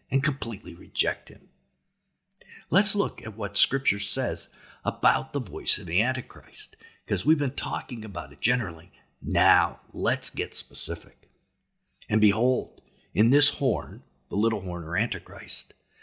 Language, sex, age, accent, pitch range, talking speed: English, male, 50-69, American, 100-145 Hz, 140 wpm